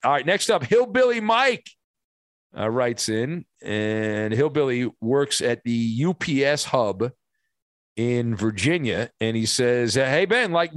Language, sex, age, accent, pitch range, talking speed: English, male, 50-69, American, 125-175 Hz, 135 wpm